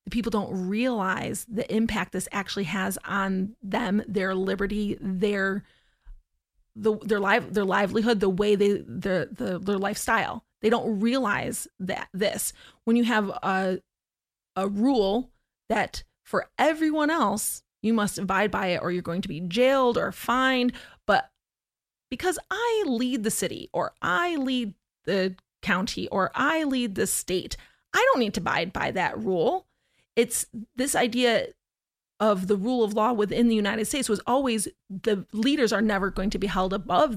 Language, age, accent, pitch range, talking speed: English, 30-49, American, 195-230 Hz, 160 wpm